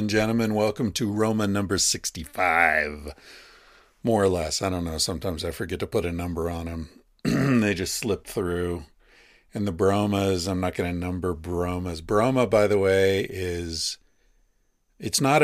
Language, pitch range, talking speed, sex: English, 90-105 Hz, 160 wpm, male